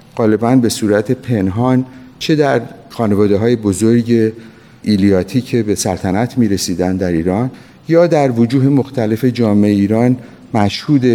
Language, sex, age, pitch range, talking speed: Persian, male, 50-69, 100-125 Hz, 130 wpm